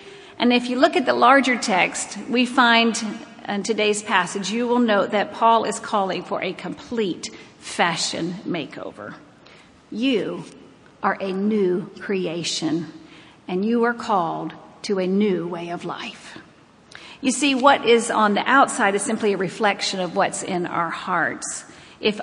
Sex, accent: female, American